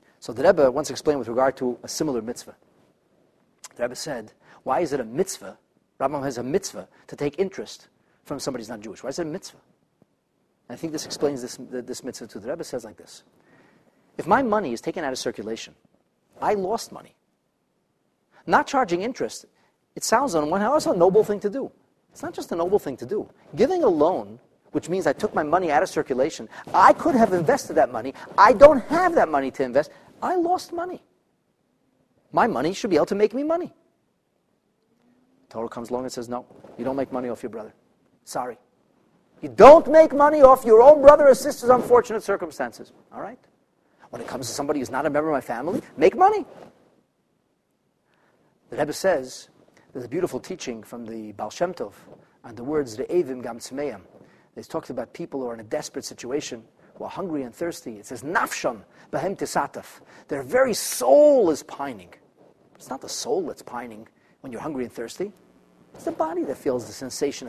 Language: English